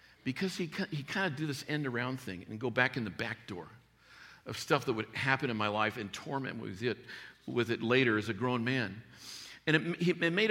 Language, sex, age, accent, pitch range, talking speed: English, male, 50-69, American, 140-195 Hz, 225 wpm